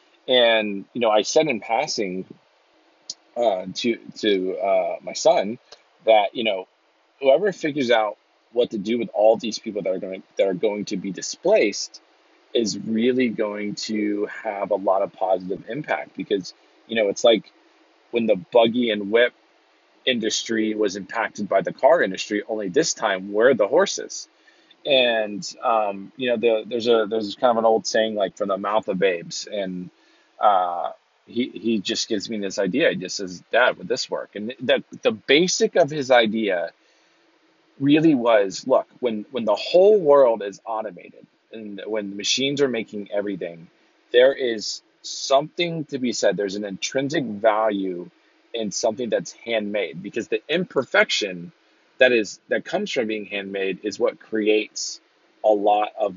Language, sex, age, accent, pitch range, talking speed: English, male, 30-49, American, 100-135 Hz, 170 wpm